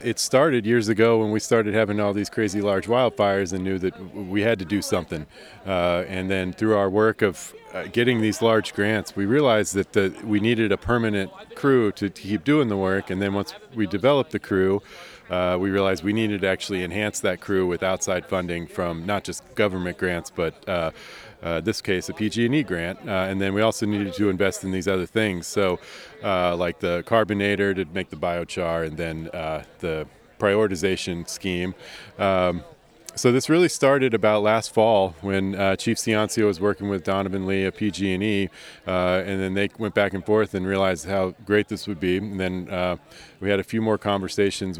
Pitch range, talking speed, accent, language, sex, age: 95-105 Hz, 200 wpm, American, English, male, 40-59